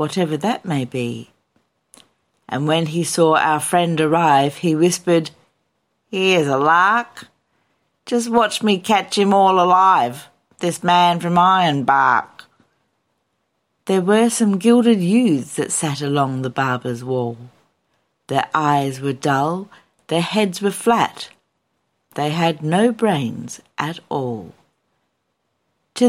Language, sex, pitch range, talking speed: English, female, 150-190 Hz, 120 wpm